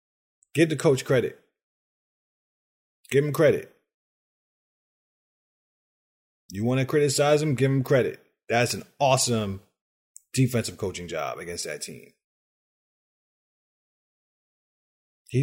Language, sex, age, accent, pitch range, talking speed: English, male, 30-49, American, 100-130 Hz, 95 wpm